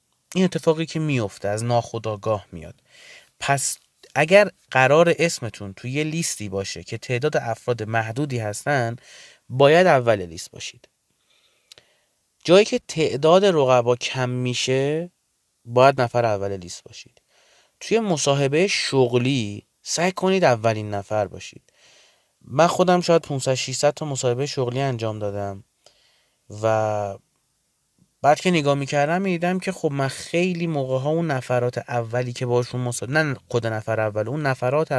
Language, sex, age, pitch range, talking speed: Persian, male, 30-49, 115-155 Hz, 125 wpm